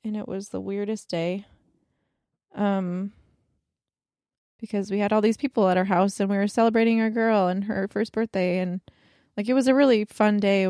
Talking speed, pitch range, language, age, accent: 195 wpm, 185-210 Hz, English, 20-39, American